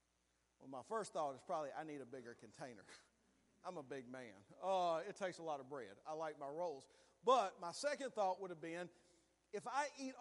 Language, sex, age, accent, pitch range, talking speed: English, male, 40-59, American, 160-245 Hz, 210 wpm